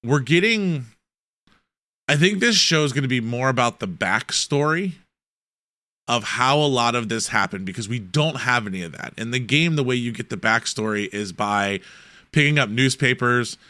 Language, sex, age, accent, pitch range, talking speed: English, male, 20-39, American, 110-140 Hz, 180 wpm